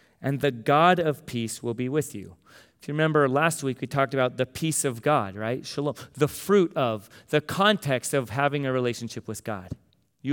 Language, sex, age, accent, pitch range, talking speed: English, male, 30-49, American, 130-170 Hz, 205 wpm